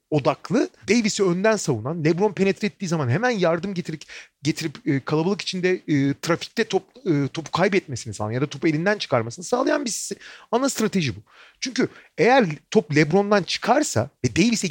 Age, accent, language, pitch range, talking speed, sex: 40-59, native, Turkish, 155-245 Hz, 160 wpm, male